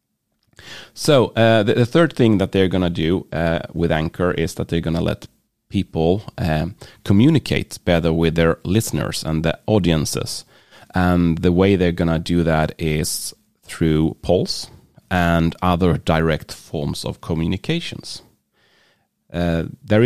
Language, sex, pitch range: English, male, 80-100 Hz